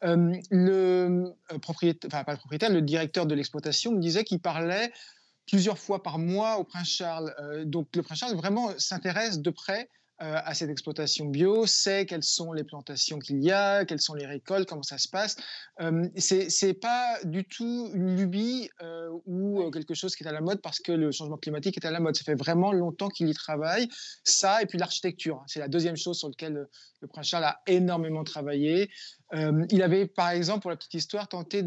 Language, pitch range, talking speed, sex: French, 155-190 Hz, 210 wpm, male